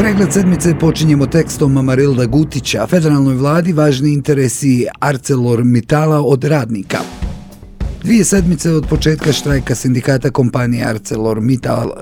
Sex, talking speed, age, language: male, 110 wpm, 40-59, Croatian